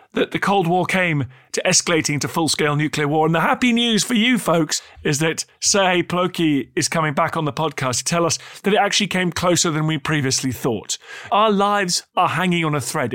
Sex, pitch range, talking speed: male, 115-170 Hz, 215 wpm